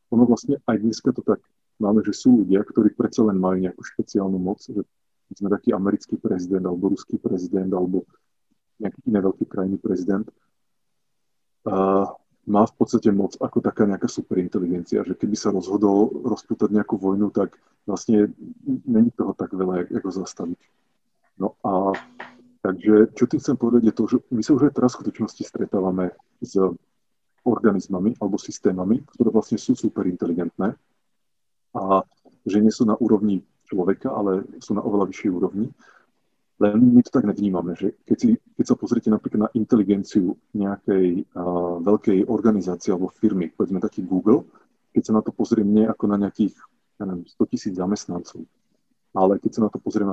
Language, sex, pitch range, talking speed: Slovak, male, 95-110 Hz, 165 wpm